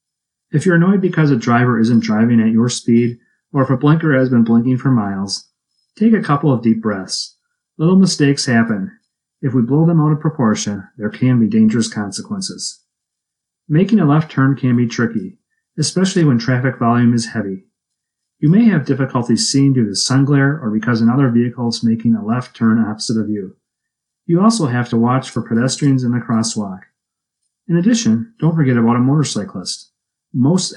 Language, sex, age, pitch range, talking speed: English, male, 40-59, 115-155 Hz, 180 wpm